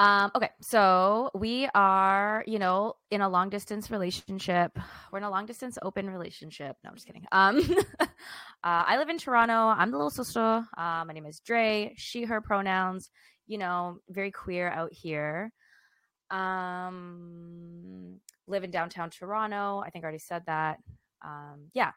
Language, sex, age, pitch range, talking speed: English, female, 20-39, 165-215 Hz, 160 wpm